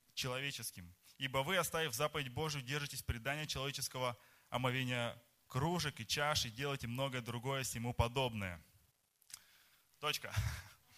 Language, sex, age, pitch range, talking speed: Russian, male, 20-39, 125-175 Hz, 110 wpm